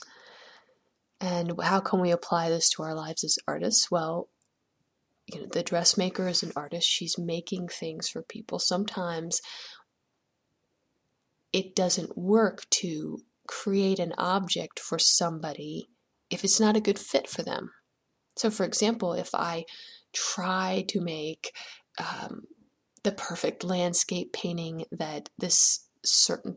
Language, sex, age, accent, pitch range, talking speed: English, female, 20-39, American, 175-250 Hz, 130 wpm